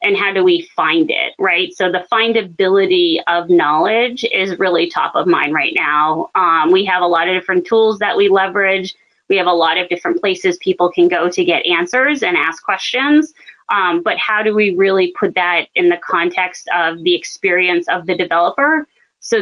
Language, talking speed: English, 200 wpm